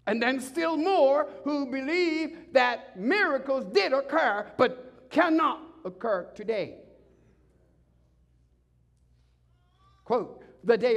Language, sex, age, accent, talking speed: English, male, 60-79, American, 95 wpm